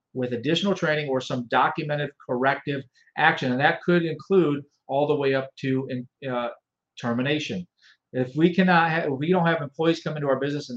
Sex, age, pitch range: male, 40-59, 130-165 Hz